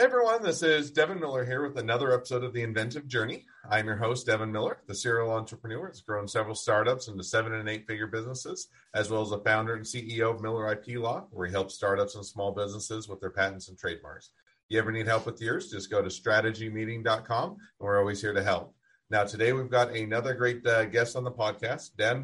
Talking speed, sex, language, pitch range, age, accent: 225 wpm, male, English, 100-115 Hz, 40-59, American